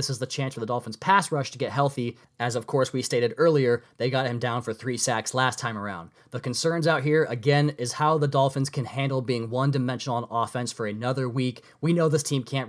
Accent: American